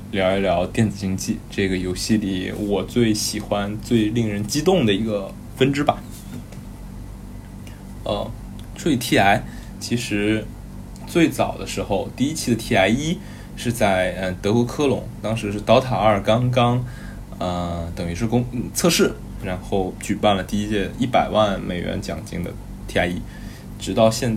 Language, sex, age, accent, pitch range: Chinese, male, 20-39, native, 95-115 Hz